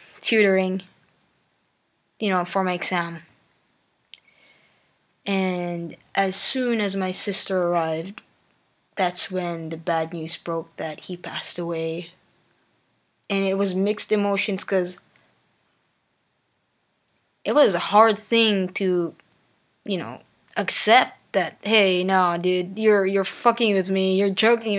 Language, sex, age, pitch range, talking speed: Filipino, female, 20-39, 185-235 Hz, 120 wpm